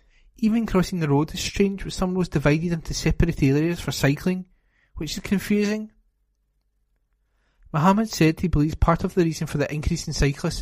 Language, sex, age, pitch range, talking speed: English, male, 30-49, 140-175 Hz, 175 wpm